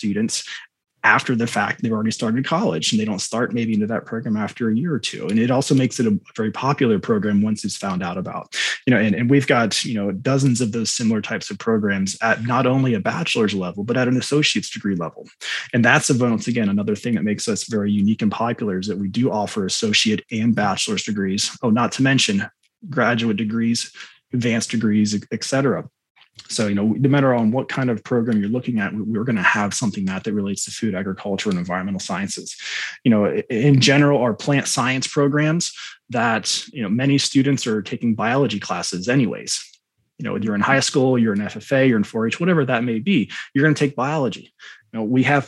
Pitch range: 110-135 Hz